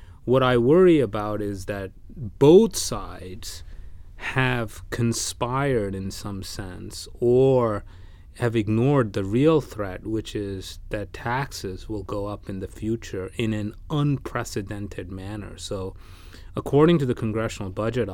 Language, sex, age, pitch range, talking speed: English, male, 30-49, 95-125 Hz, 130 wpm